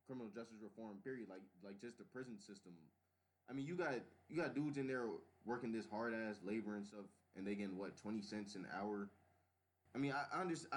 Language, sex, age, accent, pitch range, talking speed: English, male, 20-39, American, 95-120 Hz, 215 wpm